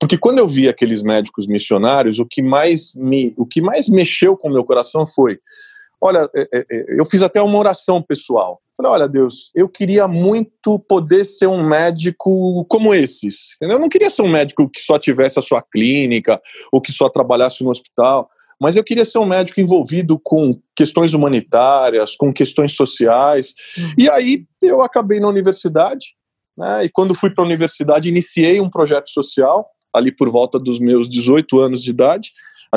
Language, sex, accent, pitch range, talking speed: Portuguese, male, Brazilian, 130-195 Hz, 180 wpm